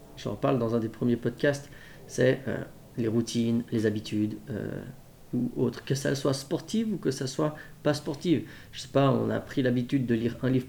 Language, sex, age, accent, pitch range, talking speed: French, male, 30-49, French, 115-140 Hz, 215 wpm